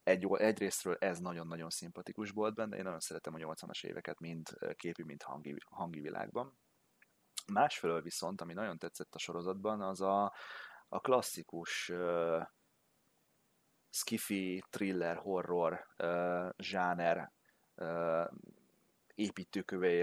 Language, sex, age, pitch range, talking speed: Hungarian, male, 30-49, 80-95 Hz, 115 wpm